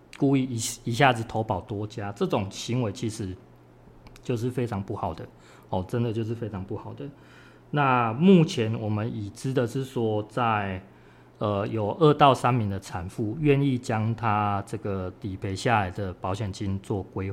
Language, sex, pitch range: Chinese, male, 100-130 Hz